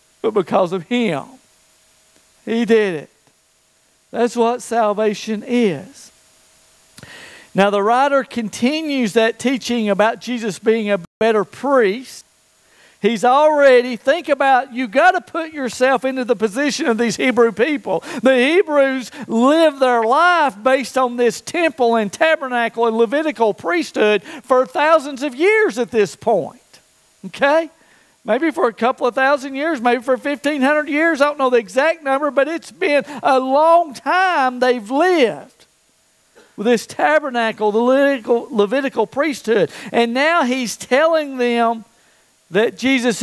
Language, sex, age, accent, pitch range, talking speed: English, male, 50-69, American, 225-285 Hz, 135 wpm